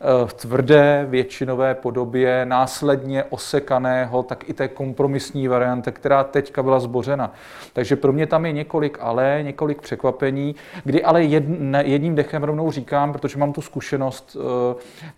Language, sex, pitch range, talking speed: Czech, male, 130-150 Hz, 140 wpm